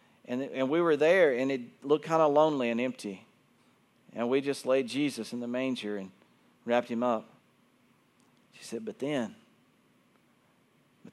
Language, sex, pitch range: English, male, 115-140 Hz